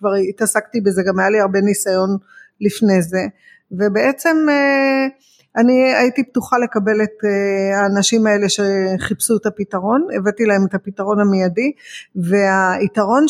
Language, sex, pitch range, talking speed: Hebrew, female, 200-250 Hz, 120 wpm